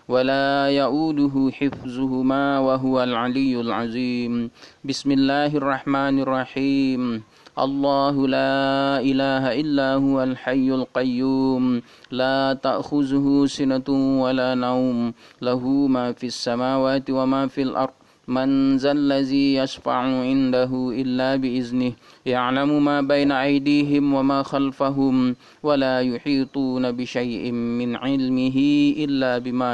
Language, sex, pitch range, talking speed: Indonesian, male, 125-140 Hz, 95 wpm